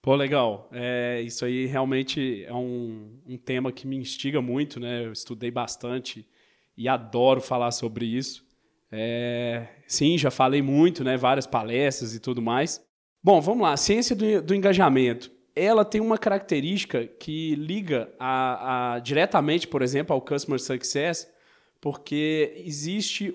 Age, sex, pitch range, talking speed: 20-39, male, 130-185 Hz, 150 wpm